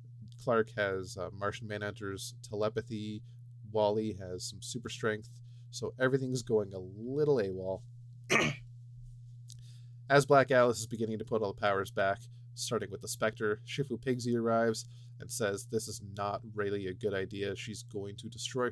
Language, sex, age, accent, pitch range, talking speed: English, male, 30-49, American, 105-120 Hz, 155 wpm